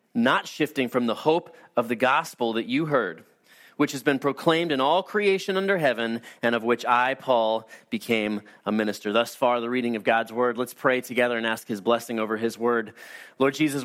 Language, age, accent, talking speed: English, 30-49, American, 205 wpm